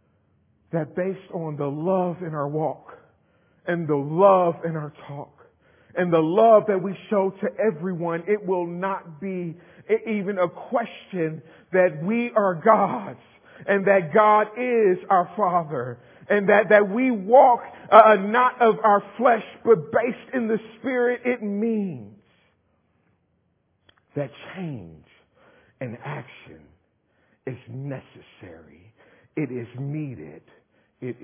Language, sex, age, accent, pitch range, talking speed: English, male, 40-59, American, 140-195 Hz, 125 wpm